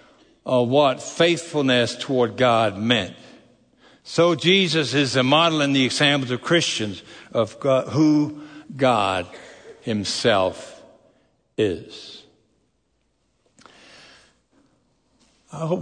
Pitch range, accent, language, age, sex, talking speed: 145-220 Hz, American, English, 60-79, male, 90 wpm